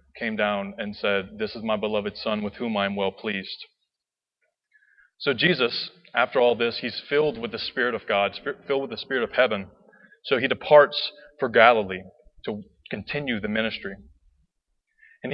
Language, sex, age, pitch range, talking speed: English, male, 20-39, 105-170 Hz, 170 wpm